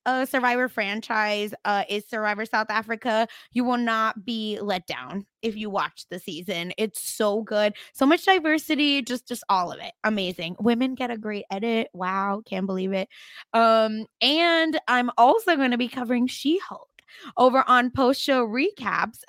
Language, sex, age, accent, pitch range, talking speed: English, female, 20-39, American, 215-270 Hz, 170 wpm